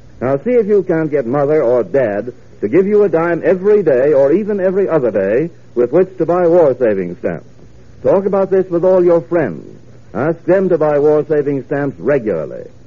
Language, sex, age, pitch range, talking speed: English, male, 60-79, 130-185 Hz, 190 wpm